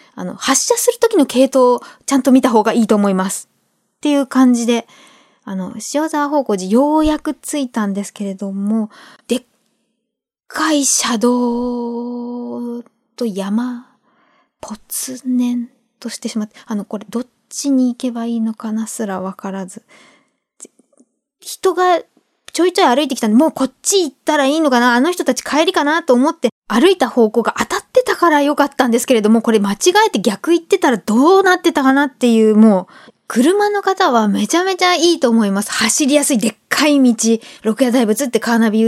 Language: Japanese